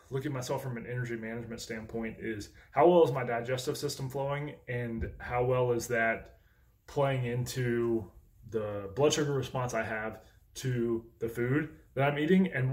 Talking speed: 170 wpm